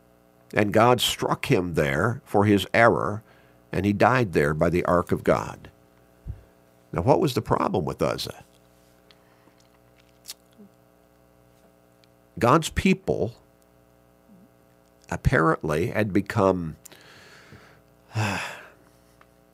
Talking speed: 90 wpm